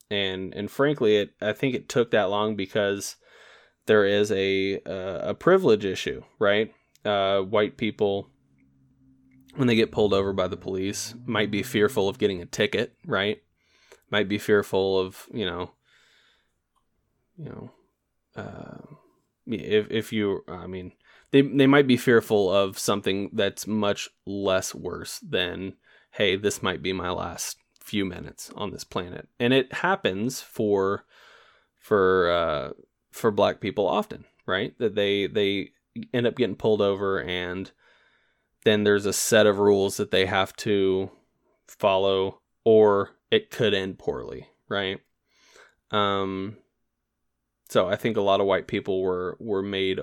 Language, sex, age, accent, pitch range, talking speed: English, male, 20-39, American, 95-105 Hz, 150 wpm